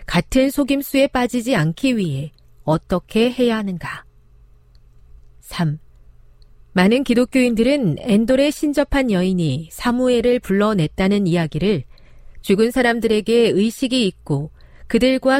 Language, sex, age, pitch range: Korean, female, 40-59, 155-240 Hz